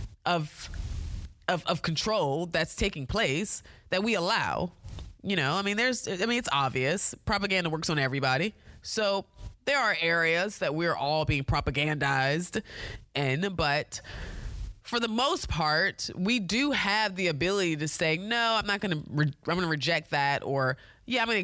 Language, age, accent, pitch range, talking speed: English, 20-39, American, 135-190 Hz, 160 wpm